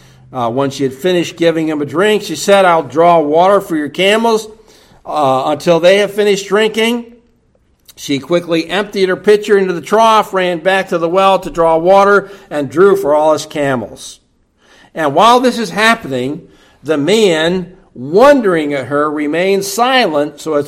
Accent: American